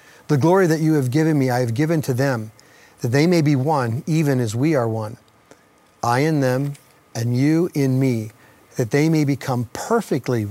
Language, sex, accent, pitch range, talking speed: English, male, American, 125-150 Hz, 195 wpm